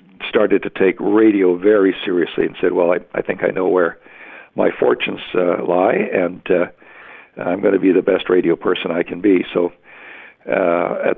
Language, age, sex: English, 60-79, male